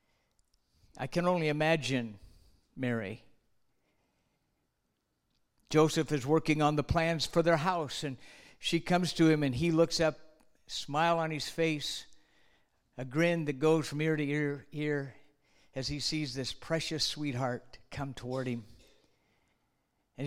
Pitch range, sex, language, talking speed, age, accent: 130-165 Hz, male, English, 135 wpm, 60-79, American